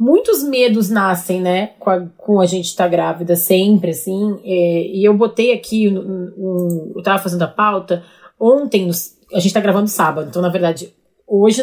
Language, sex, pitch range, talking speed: Portuguese, female, 185-225 Hz, 195 wpm